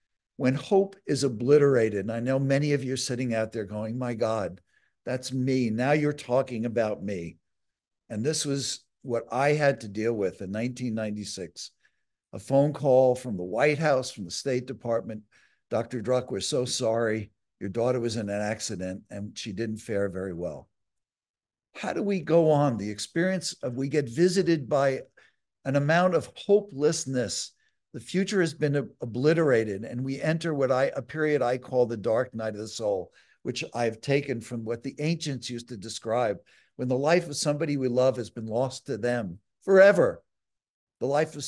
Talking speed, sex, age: 180 wpm, male, 60-79